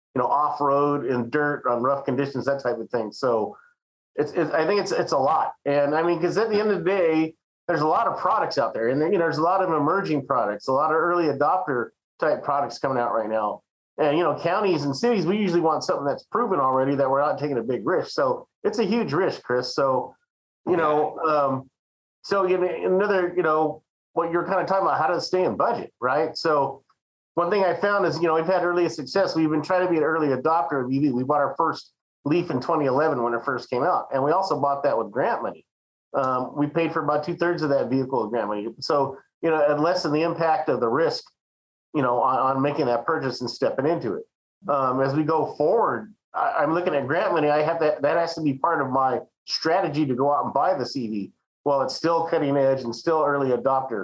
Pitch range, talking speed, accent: 140-175 Hz, 240 wpm, American